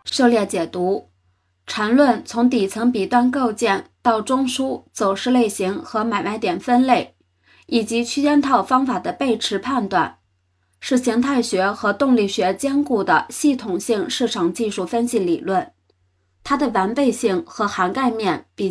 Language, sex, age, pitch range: Chinese, female, 20-39, 195-260 Hz